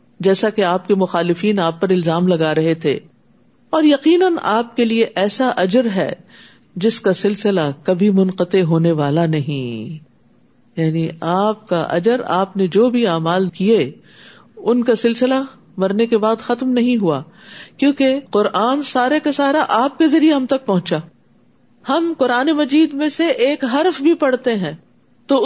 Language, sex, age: Urdu, female, 50-69